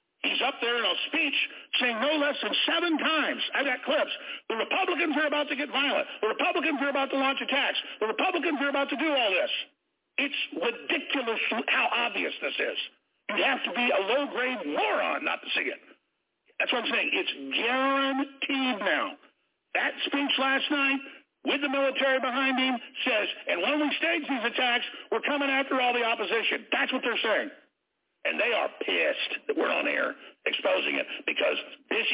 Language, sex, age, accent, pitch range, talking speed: English, male, 60-79, American, 245-295 Hz, 185 wpm